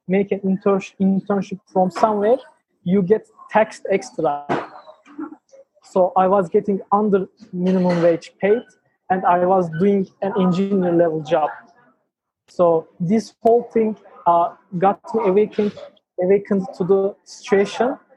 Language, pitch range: English, 175-205 Hz